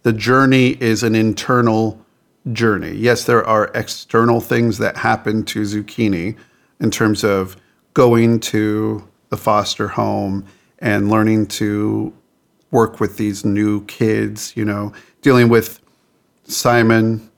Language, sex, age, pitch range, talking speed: English, male, 50-69, 110-120 Hz, 125 wpm